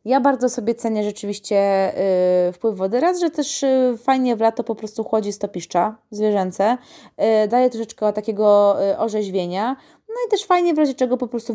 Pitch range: 200-230 Hz